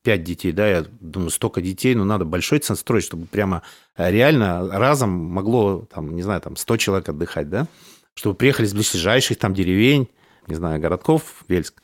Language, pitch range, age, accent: Russian, 95-125 Hz, 30-49, native